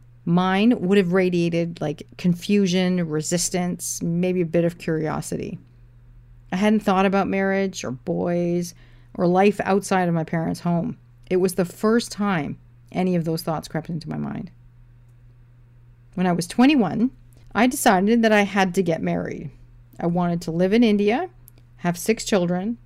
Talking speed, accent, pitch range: 160 wpm, American, 135-195 Hz